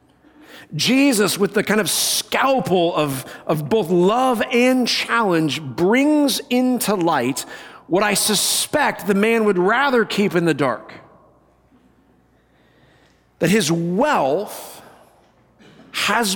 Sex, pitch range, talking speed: male, 170-235 Hz, 110 wpm